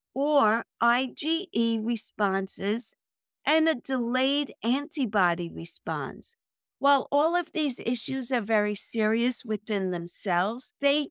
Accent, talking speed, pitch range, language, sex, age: American, 105 wpm, 205-275 Hz, English, female, 50-69